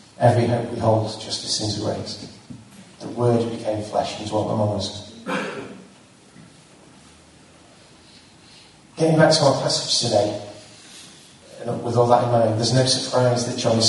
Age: 30-49